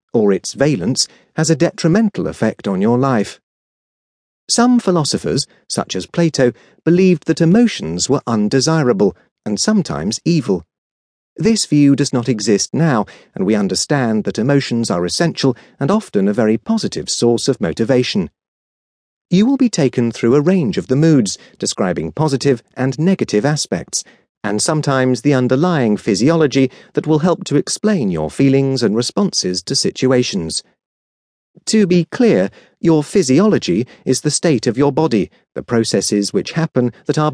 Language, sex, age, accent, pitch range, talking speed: English, male, 40-59, British, 125-180 Hz, 150 wpm